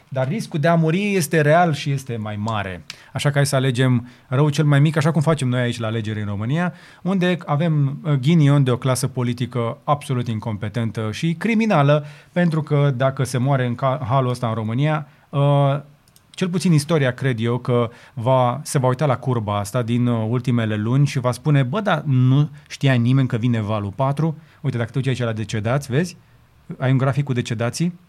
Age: 30-49